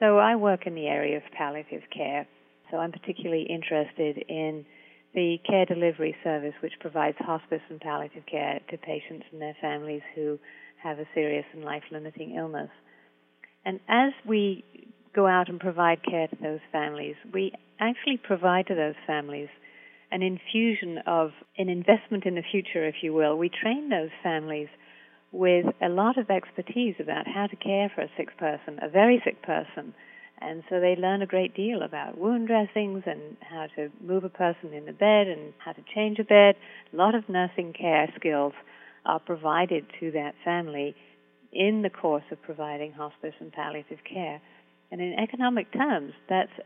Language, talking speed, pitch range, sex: English, 175 wpm, 150-200 Hz, female